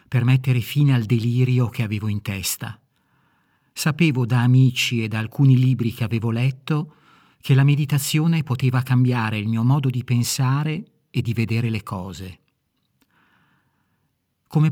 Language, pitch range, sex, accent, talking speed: Italian, 115-145 Hz, male, native, 145 wpm